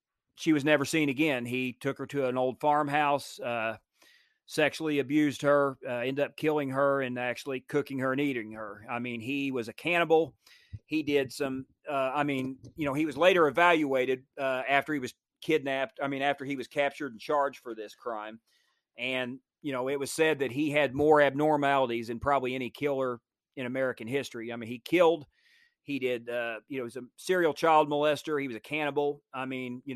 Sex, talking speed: male, 205 wpm